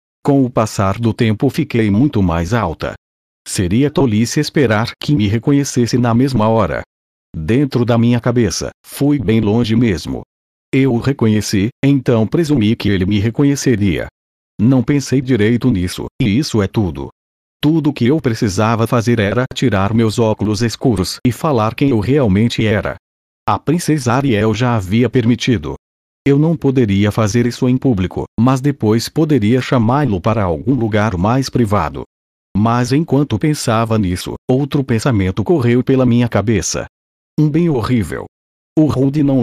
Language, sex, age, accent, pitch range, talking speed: Portuguese, male, 40-59, Brazilian, 105-135 Hz, 150 wpm